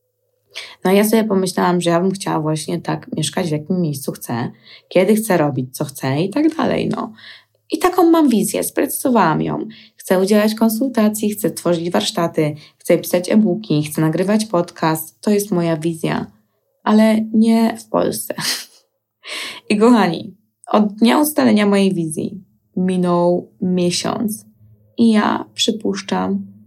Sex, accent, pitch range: female, native, 170-220 Hz